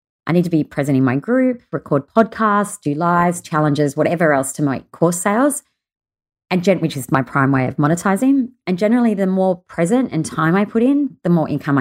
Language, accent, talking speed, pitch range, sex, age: English, Australian, 210 wpm, 135-185 Hz, female, 30-49